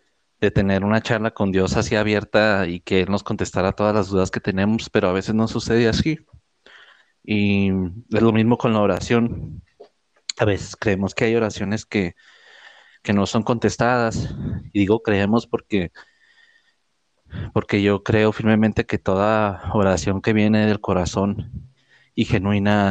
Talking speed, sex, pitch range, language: 155 wpm, male, 100-115 Hz, Spanish